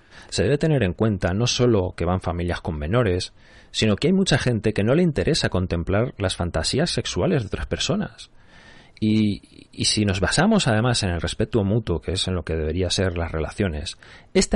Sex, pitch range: male, 85-115 Hz